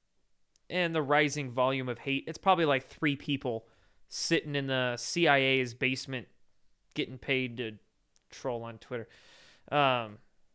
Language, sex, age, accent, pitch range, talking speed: English, male, 20-39, American, 125-165 Hz, 130 wpm